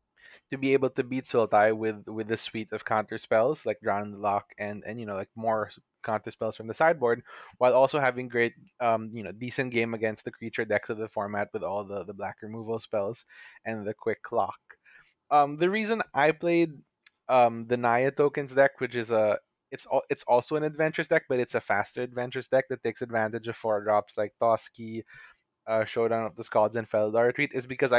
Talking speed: 215 wpm